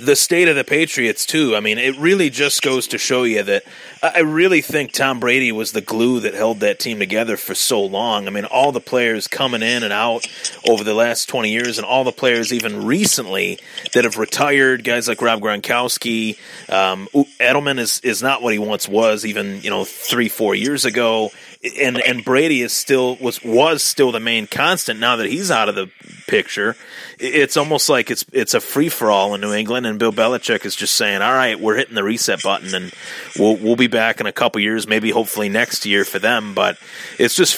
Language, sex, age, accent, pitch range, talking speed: English, male, 30-49, American, 110-135 Hz, 215 wpm